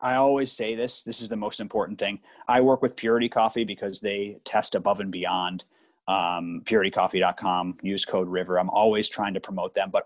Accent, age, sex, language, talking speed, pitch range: American, 30-49, male, English, 195 wpm, 110-150 Hz